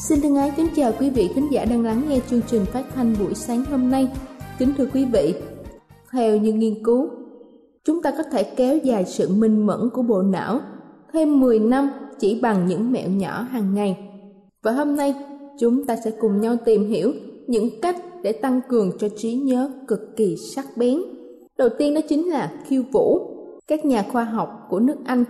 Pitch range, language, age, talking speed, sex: 215-280 Hz, Vietnamese, 20-39, 205 wpm, female